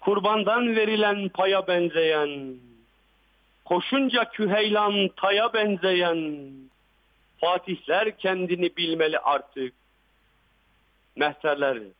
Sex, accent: male, native